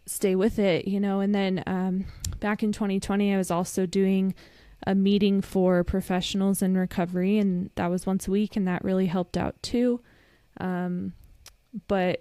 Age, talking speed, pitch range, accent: 20-39, 170 wpm, 180-200 Hz, American